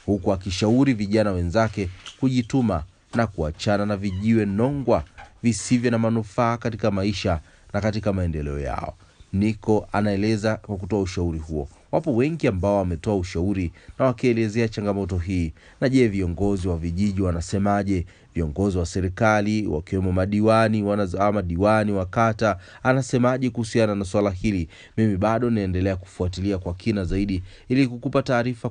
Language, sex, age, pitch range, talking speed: Swahili, male, 30-49, 95-115 Hz, 130 wpm